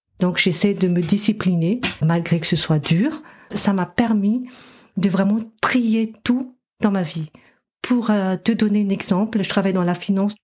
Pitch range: 185-235 Hz